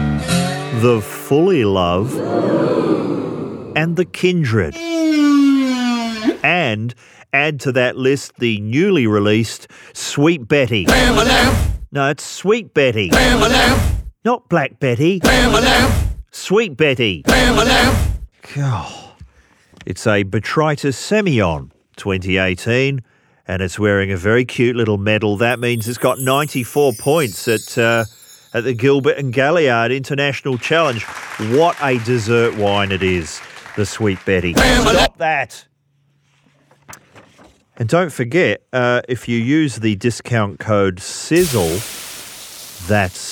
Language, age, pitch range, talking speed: English, 40-59, 105-145 Hz, 105 wpm